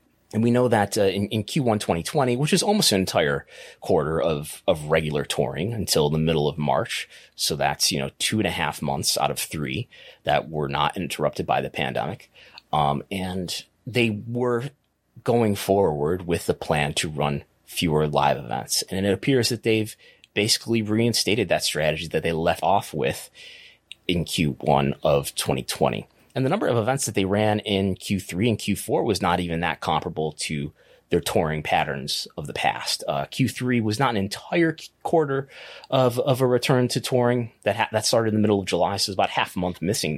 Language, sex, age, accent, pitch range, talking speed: English, male, 30-49, American, 85-120 Hz, 190 wpm